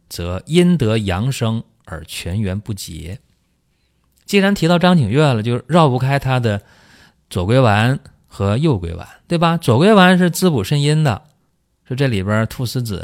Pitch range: 95-140 Hz